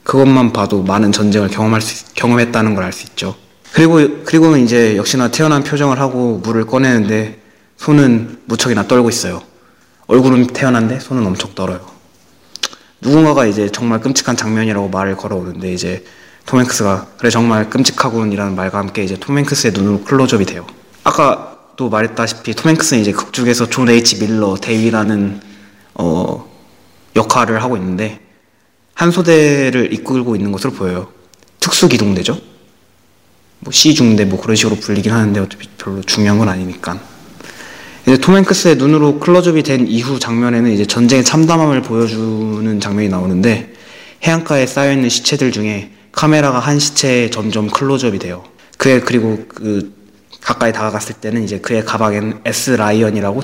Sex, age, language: male, 20-39, Korean